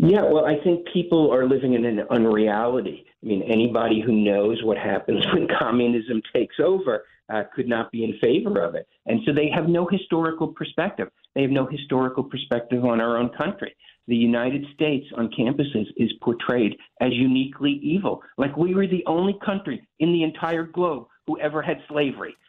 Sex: male